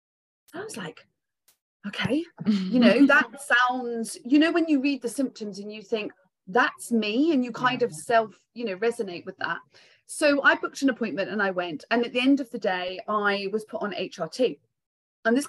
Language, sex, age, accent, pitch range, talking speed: English, female, 30-49, British, 200-260 Hz, 200 wpm